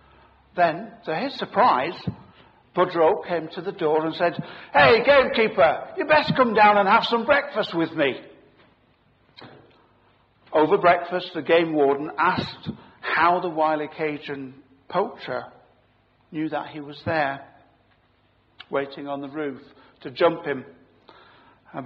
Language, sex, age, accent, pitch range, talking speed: English, male, 60-79, British, 145-190 Hz, 130 wpm